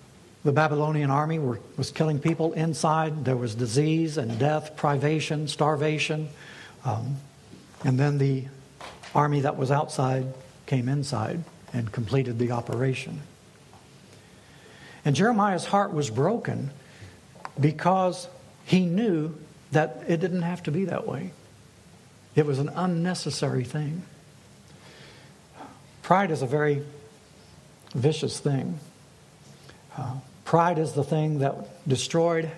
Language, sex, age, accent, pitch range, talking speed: English, male, 60-79, American, 135-160 Hz, 115 wpm